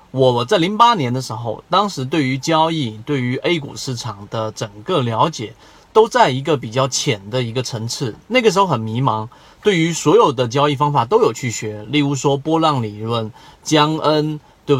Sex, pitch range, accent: male, 125-160 Hz, native